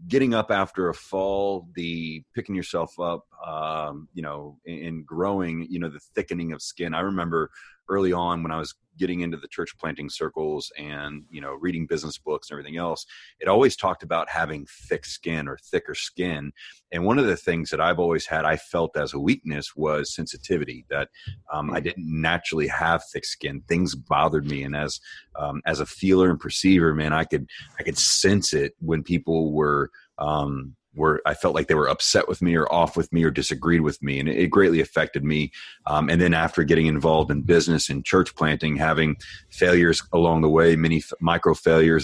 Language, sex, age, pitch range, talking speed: English, male, 30-49, 75-85 Hz, 200 wpm